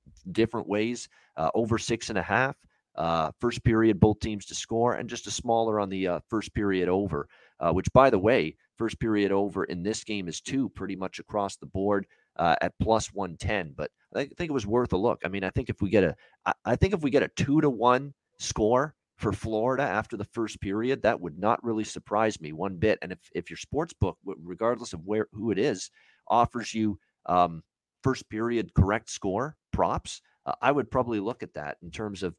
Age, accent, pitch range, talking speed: 40-59, American, 95-120 Hz, 220 wpm